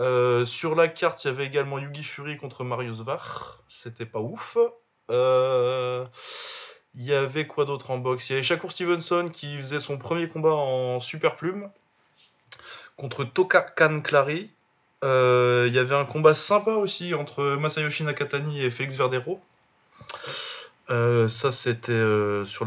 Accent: French